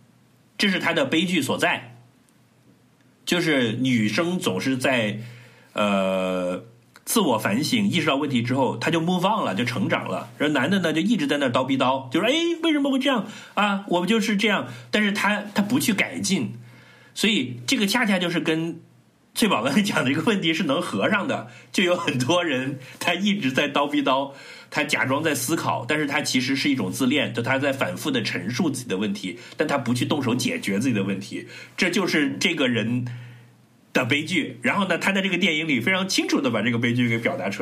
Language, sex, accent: Chinese, male, native